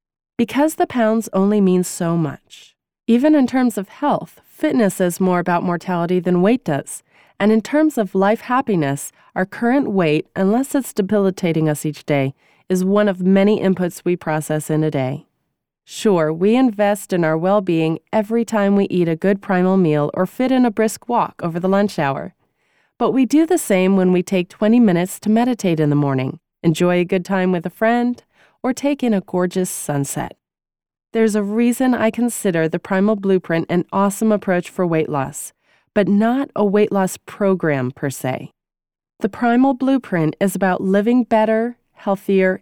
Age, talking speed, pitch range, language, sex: 30-49, 180 wpm, 175-220 Hz, English, female